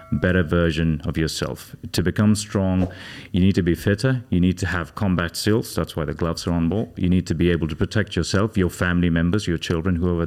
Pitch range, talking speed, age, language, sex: 90-115 Hz, 230 wpm, 30-49, English, male